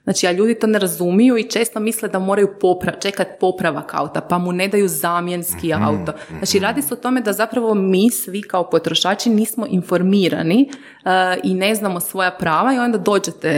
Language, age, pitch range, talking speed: Croatian, 30-49, 170-220 Hz, 190 wpm